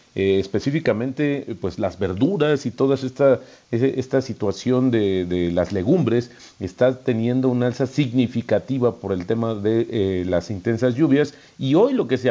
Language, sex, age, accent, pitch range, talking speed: Spanish, male, 40-59, Mexican, 105-135 Hz, 155 wpm